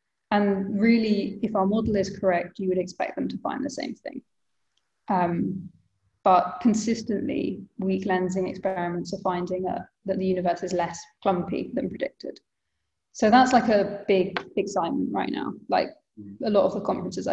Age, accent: 20-39, British